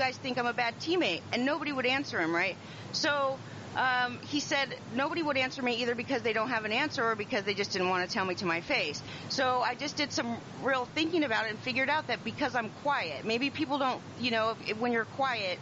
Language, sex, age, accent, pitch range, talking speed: English, female, 40-59, American, 210-260 Hz, 250 wpm